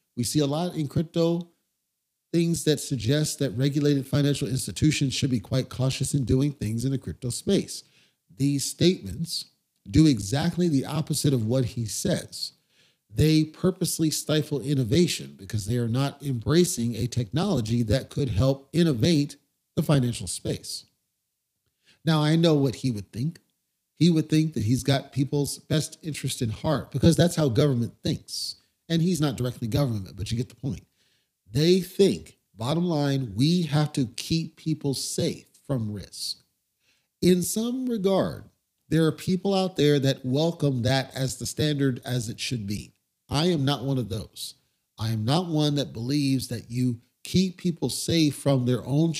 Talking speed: 165 wpm